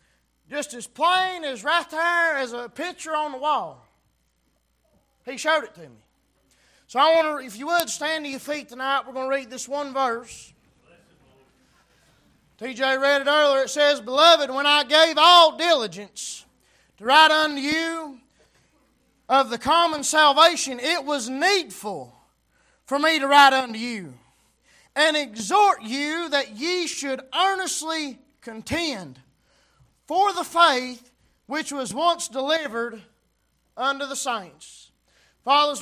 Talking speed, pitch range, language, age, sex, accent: 140 wpm, 255-300 Hz, English, 20-39, male, American